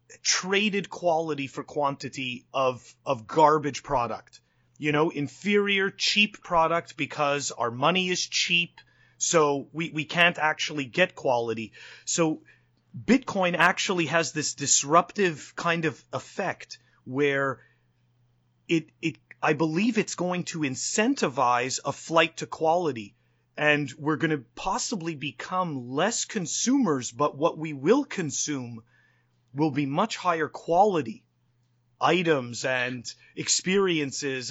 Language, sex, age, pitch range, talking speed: English, male, 30-49, 140-175 Hz, 120 wpm